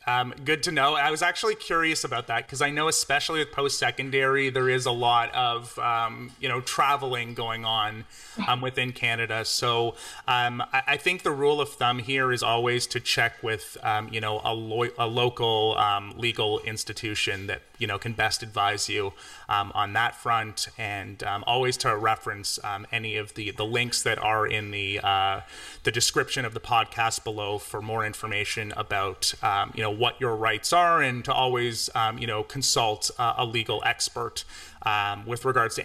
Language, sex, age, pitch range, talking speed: English, male, 30-49, 110-135 Hz, 185 wpm